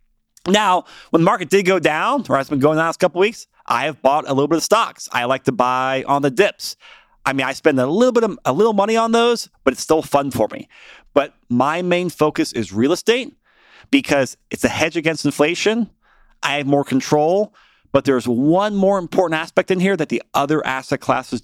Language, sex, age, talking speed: English, male, 30-49, 225 wpm